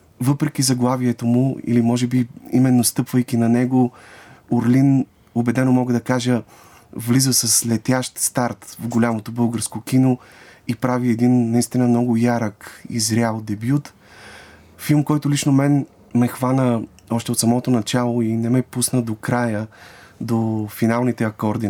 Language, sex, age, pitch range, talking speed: Bulgarian, male, 30-49, 105-125 Hz, 140 wpm